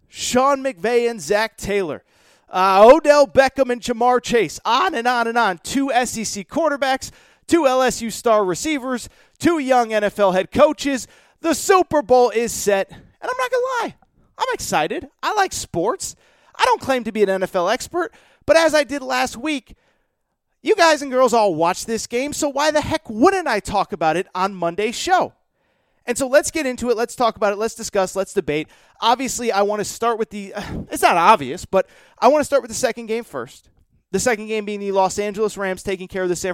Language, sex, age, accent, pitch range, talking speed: English, male, 30-49, American, 195-265 Hz, 205 wpm